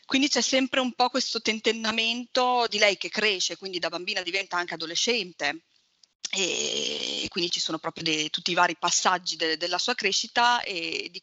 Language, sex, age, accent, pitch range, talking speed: Italian, female, 30-49, native, 175-220 Hz, 165 wpm